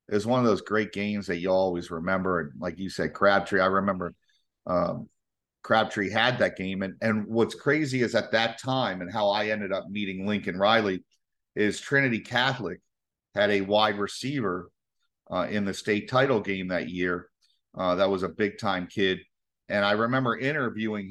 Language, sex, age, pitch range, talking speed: English, male, 40-59, 100-125 Hz, 185 wpm